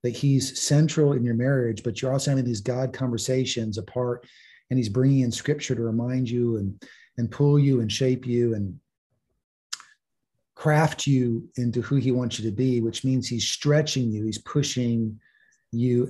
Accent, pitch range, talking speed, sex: American, 120-150 Hz, 175 wpm, male